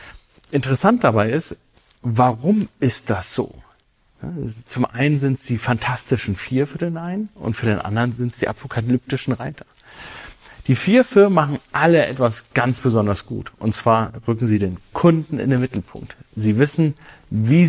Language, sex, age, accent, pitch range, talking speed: German, male, 40-59, German, 100-135 Hz, 165 wpm